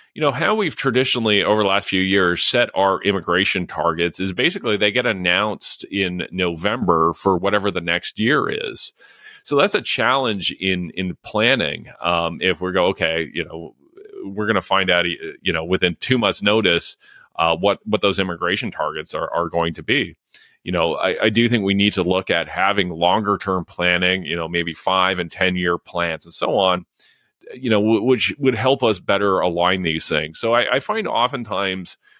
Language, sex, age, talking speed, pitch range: English, male, 30-49, 195 wpm, 90-110 Hz